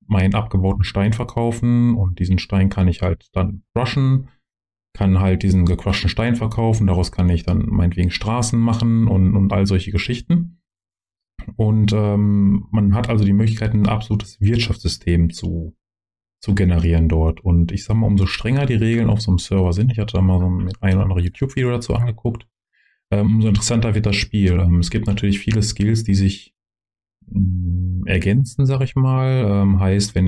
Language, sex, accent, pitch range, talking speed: German, male, German, 90-110 Hz, 180 wpm